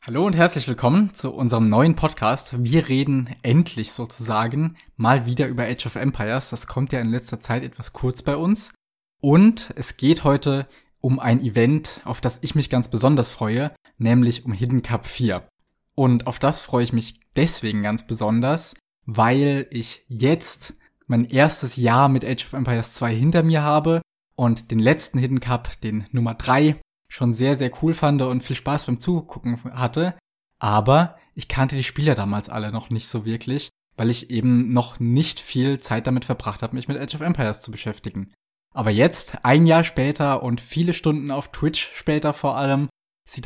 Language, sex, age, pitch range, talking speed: German, male, 20-39, 115-145 Hz, 180 wpm